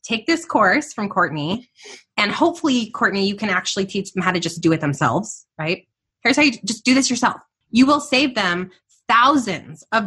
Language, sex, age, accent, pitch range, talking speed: English, female, 20-39, American, 190-245 Hz, 195 wpm